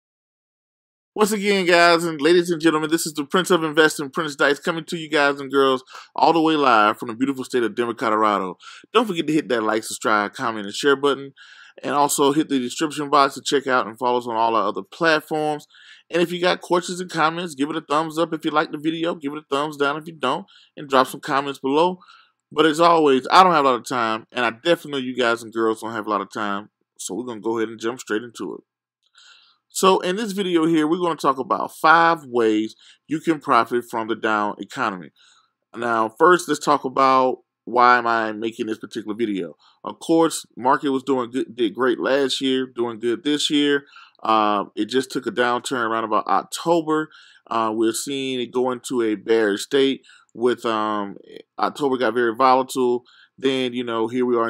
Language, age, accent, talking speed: English, 20-39, American, 220 wpm